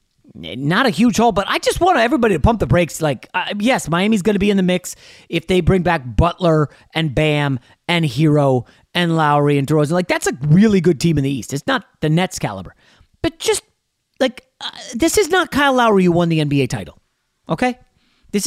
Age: 30-49